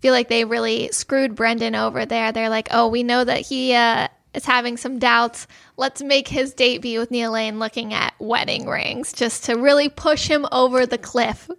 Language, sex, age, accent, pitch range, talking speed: English, female, 10-29, American, 240-270 Hz, 205 wpm